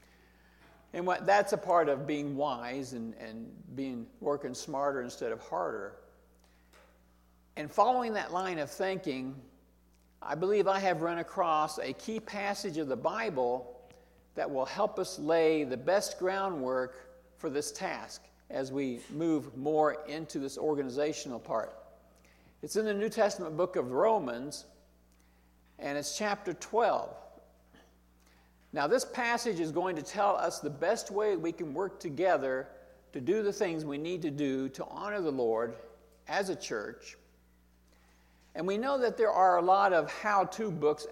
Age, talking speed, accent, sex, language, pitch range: 60-79, 155 wpm, American, male, English, 120-185 Hz